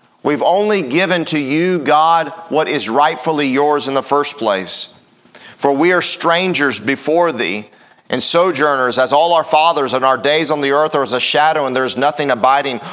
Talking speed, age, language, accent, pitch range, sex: 190 wpm, 40-59, English, American, 140-175 Hz, male